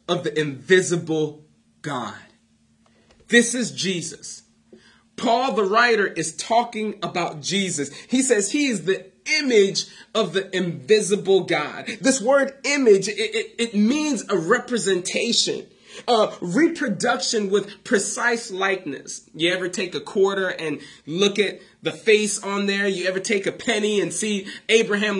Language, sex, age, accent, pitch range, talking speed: English, male, 30-49, American, 165-230 Hz, 140 wpm